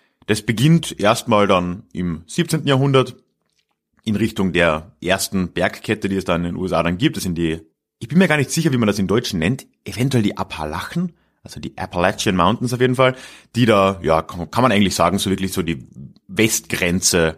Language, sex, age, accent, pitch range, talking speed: German, male, 30-49, German, 90-125 Hz, 195 wpm